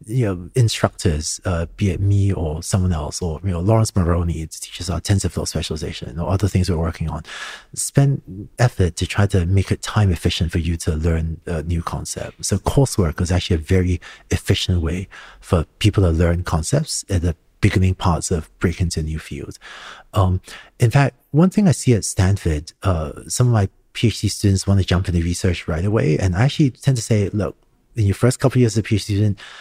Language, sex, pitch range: English, male, 85-110 Hz